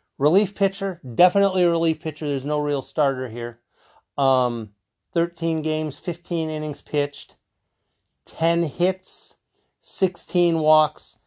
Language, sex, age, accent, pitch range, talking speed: English, male, 40-59, American, 120-155 Hz, 110 wpm